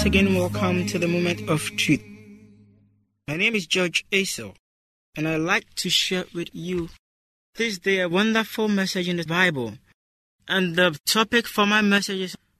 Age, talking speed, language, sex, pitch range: 20-39, 160 wpm, English, male, 160-220 Hz